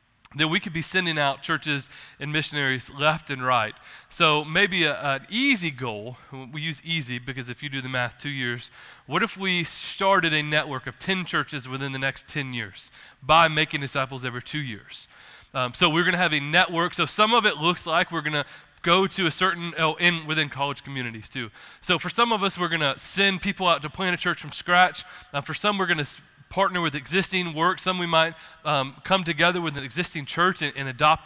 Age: 20-39